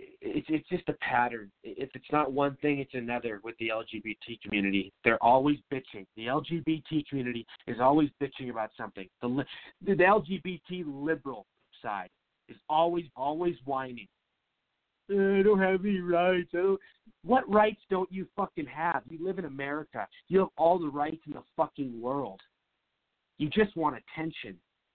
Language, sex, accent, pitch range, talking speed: English, male, American, 125-165 Hz, 155 wpm